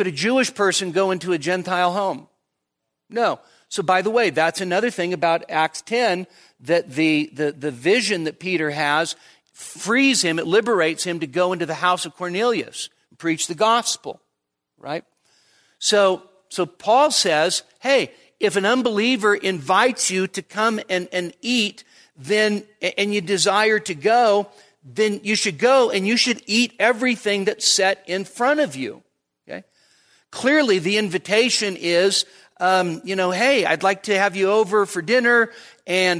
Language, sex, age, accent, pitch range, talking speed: English, male, 50-69, American, 175-215 Hz, 160 wpm